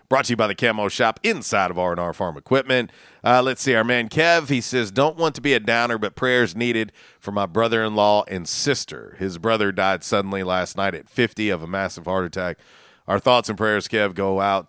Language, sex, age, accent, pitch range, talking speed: English, male, 40-59, American, 95-130 Hz, 220 wpm